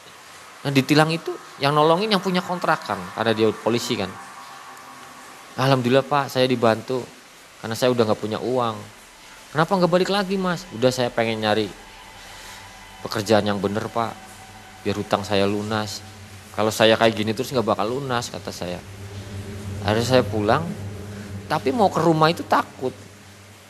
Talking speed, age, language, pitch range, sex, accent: 150 wpm, 20-39, Indonesian, 105-150 Hz, male, native